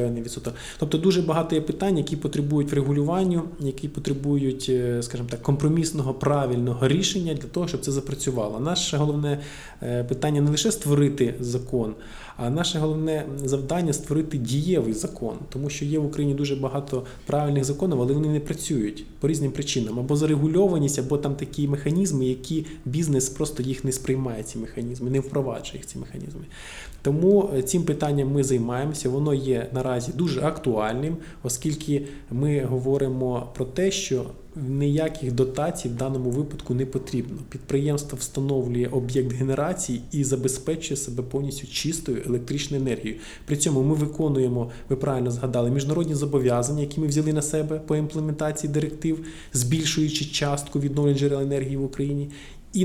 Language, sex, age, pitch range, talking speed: Ukrainian, male, 20-39, 130-150 Hz, 145 wpm